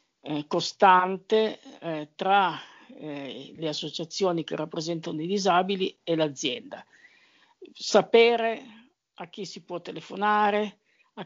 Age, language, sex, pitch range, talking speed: 50-69, Italian, female, 155-200 Hz, 100 wpm